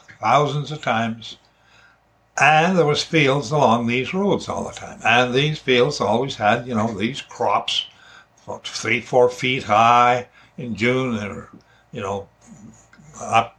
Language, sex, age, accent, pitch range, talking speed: English, male, 60-79, American, 115-165 Hz, 150 wpm